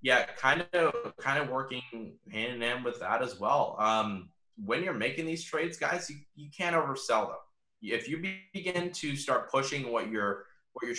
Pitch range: 105-135 Hz